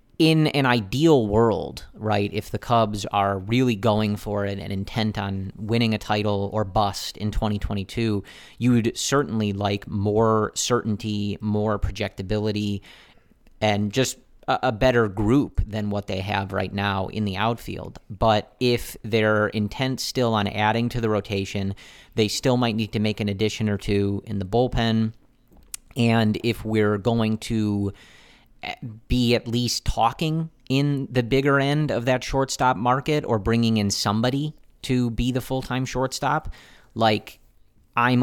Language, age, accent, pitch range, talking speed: English, 30-49, American, 105-120 Hz, 150 wpm